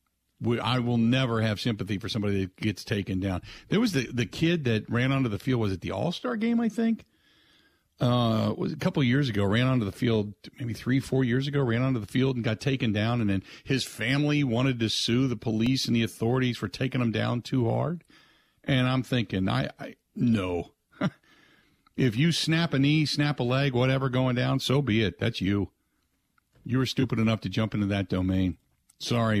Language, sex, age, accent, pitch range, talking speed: English, male, 50-69, American, 110-145 Hz, 210 wpm